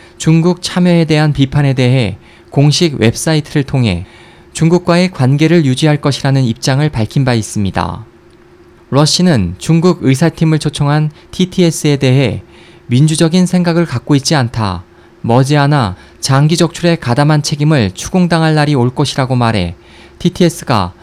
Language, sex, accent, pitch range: Korean, male, native, 115-165 Hz